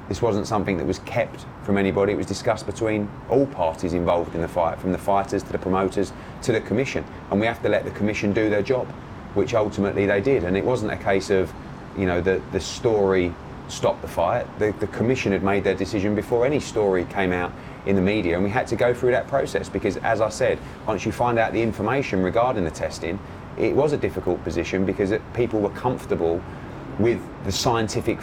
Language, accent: English, British